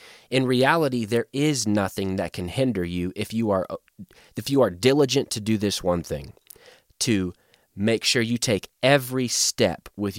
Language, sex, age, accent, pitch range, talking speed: English, male, 30-49, American, 100-130 Hz, 170 wpm